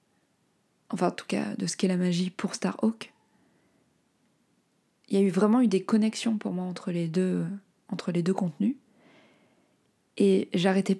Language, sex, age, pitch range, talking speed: French, female, 20-39, 190-220 Hz, 170 wpm